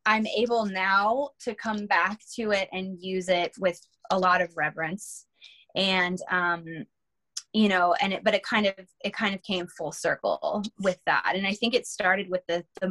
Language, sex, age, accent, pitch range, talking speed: English, female, 20-39, American, 180-215 Hz, 195 wpm